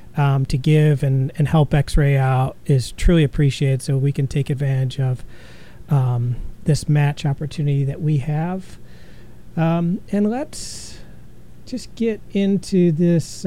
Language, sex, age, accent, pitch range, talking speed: English, male, 40-59, American, 145-175 Hz, 140 wpm